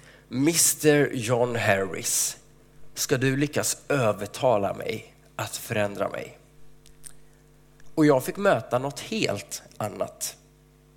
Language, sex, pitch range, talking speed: Swedish, male, 120-155 Hz, 100 wpm